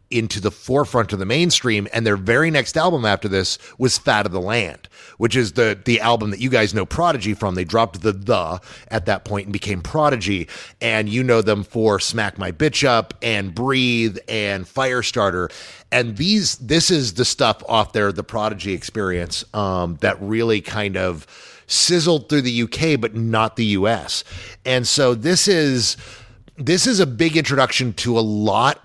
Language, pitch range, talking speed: English, 100-125 Hz, 185 wpm